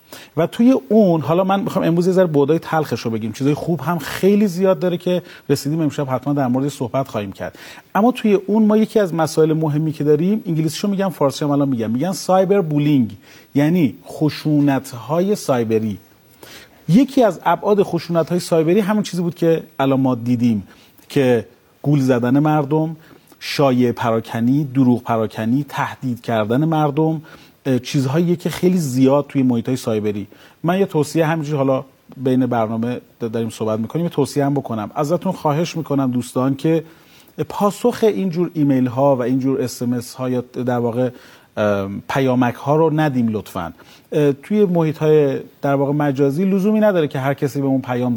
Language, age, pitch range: Persian, 40-59, 125-170 Hz